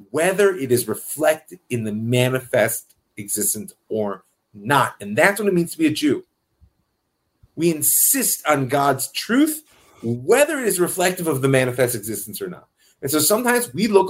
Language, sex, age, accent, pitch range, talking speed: English, male, 30-49, American, 105-150 Hz, 165 wpm